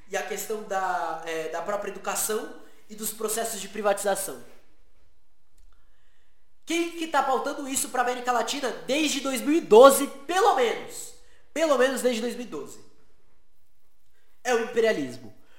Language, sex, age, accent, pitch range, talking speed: Portuguese, male, 20-39, Brazilian, 215-275 Hz, 125 wpm